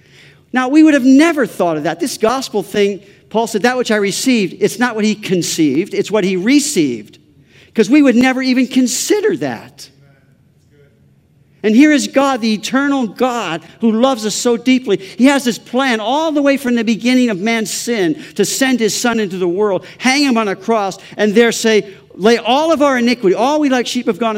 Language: English